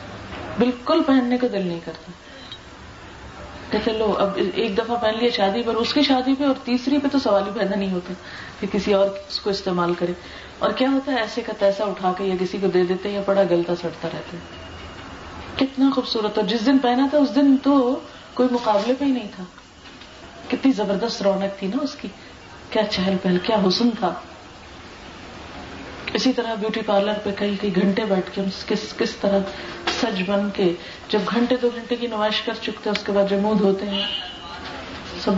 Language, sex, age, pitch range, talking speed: Urdu, female, 30-49, 190-235 Hz, 195 wpm